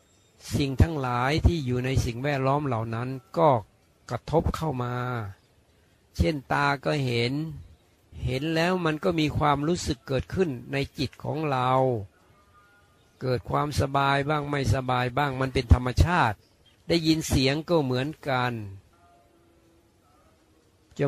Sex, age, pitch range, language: male, 60-79, 110-145 Hz, Thai